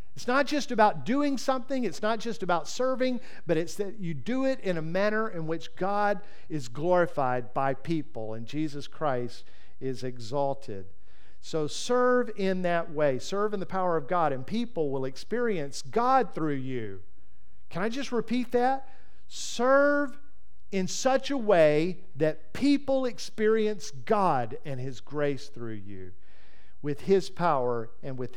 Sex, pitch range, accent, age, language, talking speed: male, 130-220 Hz, American, 50-69, English, 155 wpm